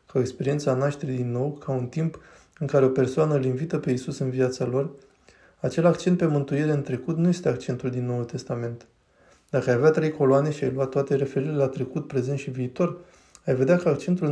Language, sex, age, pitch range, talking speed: Romanian, male, 20-39, 130-150 Hz, 210 wpm